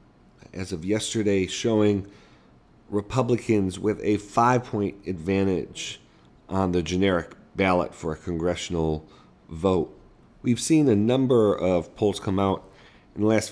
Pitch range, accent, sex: 90-105 Hz, American, male